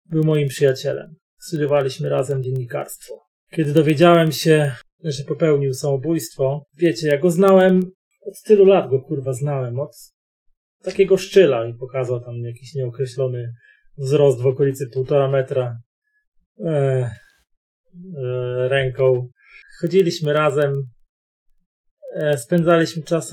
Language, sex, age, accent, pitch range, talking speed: Polish, male, 30-49, native, 135-170 Hz, 110 wpm